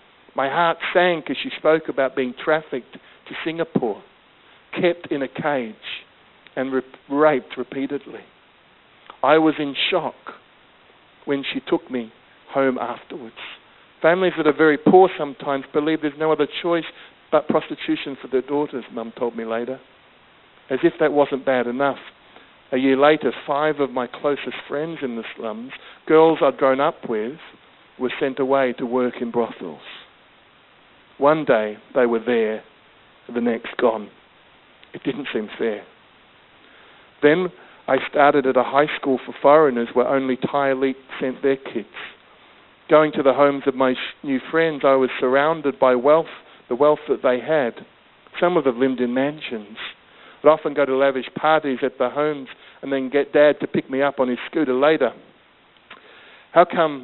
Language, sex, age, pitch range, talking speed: English, male, 60-79, 130-155 Hz, 160 wpm